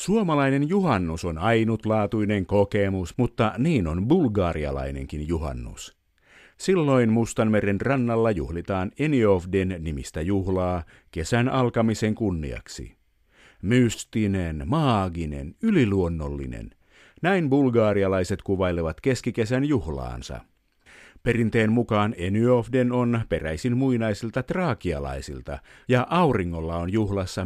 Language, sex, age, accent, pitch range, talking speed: Finnish, male, 50-69, native, 85-125 Hz, 85 wpm